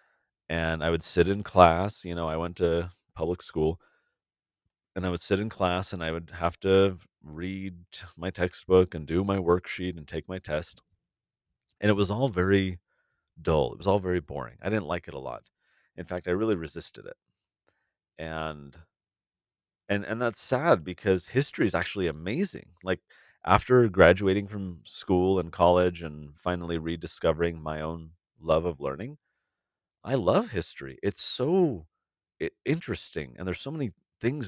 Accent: American